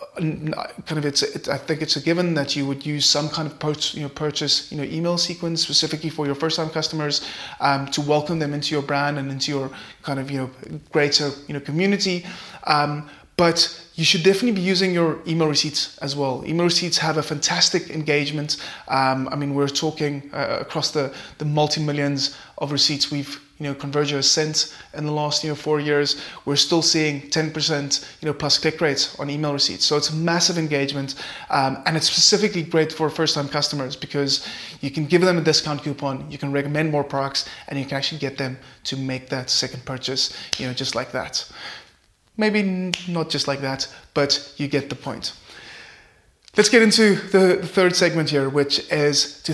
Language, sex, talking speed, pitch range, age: English, male, 200 wpm, 145-170 Hz, 20-39